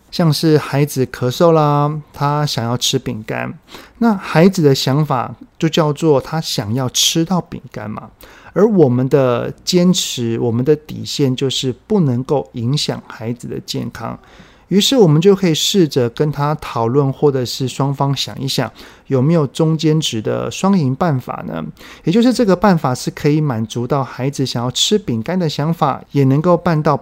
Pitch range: 125-165 Hz